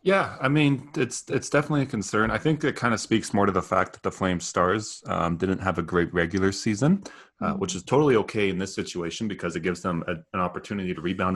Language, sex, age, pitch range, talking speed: English, male, 30-49, 85-110 Hz, 245 wpm